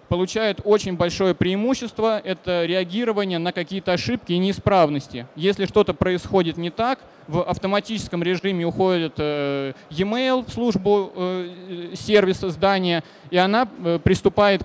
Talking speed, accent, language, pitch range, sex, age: 115 wpm, native, Russian, 165-200 Hz, male, 20-39